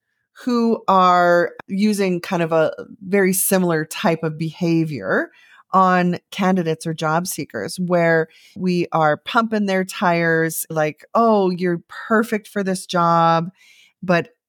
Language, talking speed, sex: English, 125 wpm, female